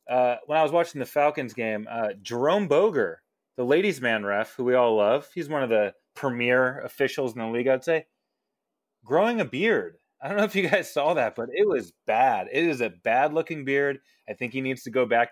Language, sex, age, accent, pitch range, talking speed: English, male, 30-49, American, 120-165 Hz, 225 wpm